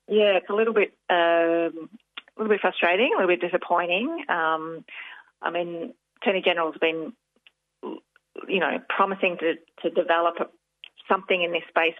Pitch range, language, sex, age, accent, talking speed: 160-185 Hz, English, female, 30-49, Australian, 155 wpm